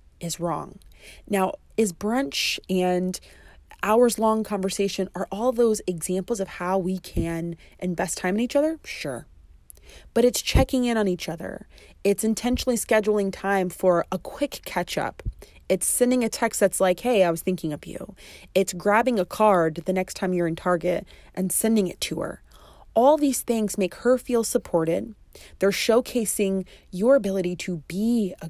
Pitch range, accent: 175-220 Hz, American